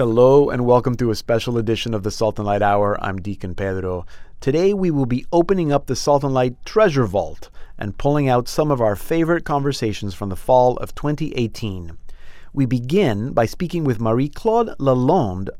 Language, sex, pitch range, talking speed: English, male, 105-135 Hz, 185 wpm